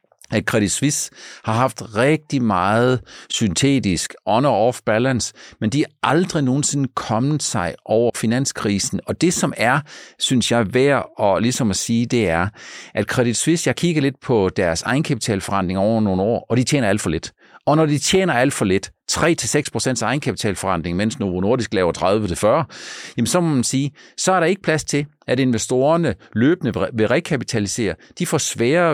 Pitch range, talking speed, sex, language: 110-145 Hz, 175 wpm, male, Danish